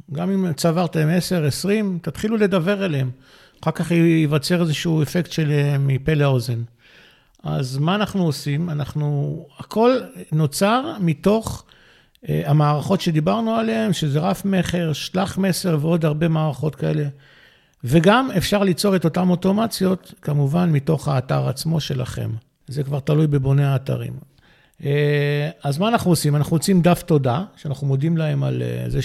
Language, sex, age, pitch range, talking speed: Hebrew, male, 50-69, 140-180 Hz, 140 wpm